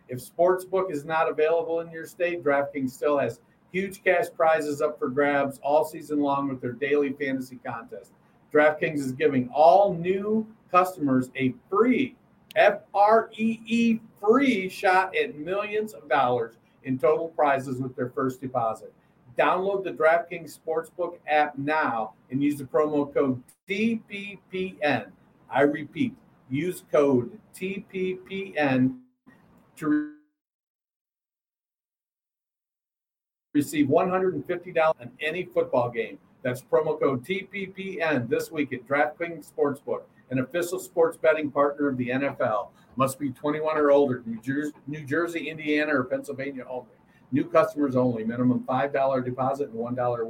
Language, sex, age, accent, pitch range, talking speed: English, male, 50-69, American, 140-190 Hz, 130 wpm